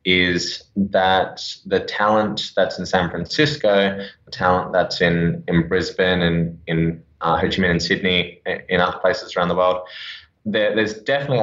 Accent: Australian